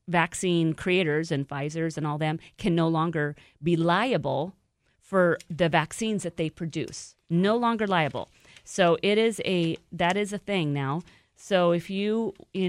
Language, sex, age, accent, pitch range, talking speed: English, female, 40-59, American, 145-180 Hz, 160 wpm